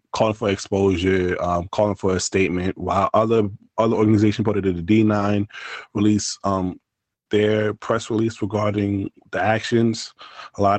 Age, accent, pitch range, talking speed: 20-39, American, 95-110 Hz, 150 wpm